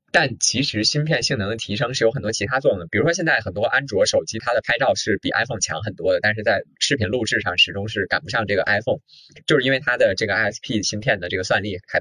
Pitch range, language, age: 105-145 Hz, Chinese, 20-39